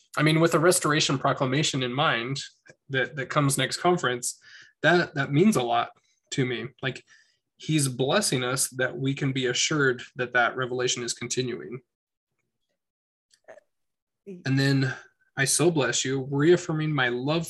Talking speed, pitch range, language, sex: 145 wpm, 130-160 Hz, English, male